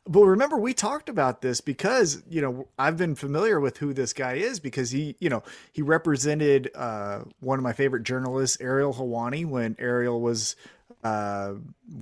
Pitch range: 120-155 Hz